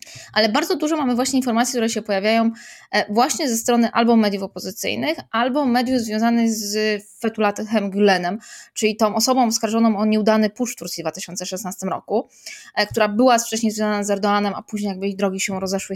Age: 20-39